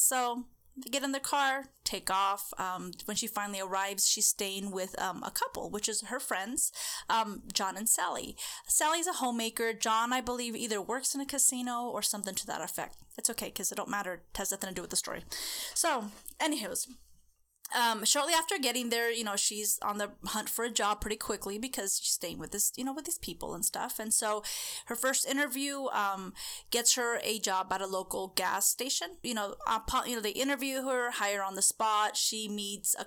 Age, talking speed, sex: 20-39, 210 wpm, female